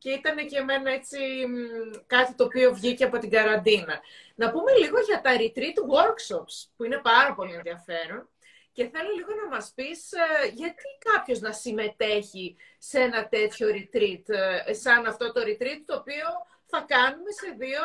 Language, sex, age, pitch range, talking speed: Greek, female, 30-49, 225-370 Hz, 160 wpm